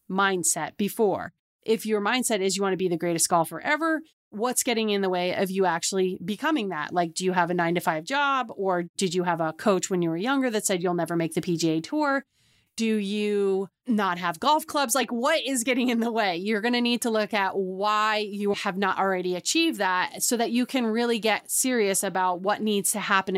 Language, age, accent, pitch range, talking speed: English, 30-49, American, 185-230 Hz, 230 wpm